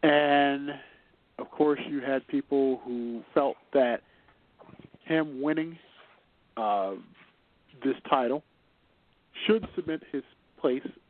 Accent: American